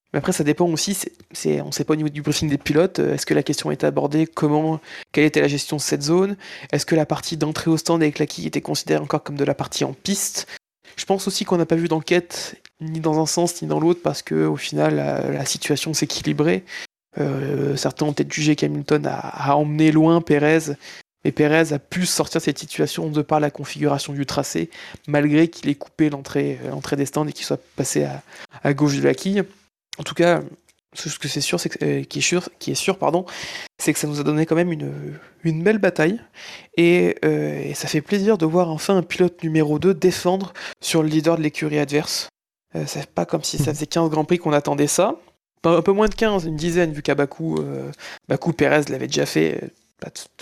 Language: French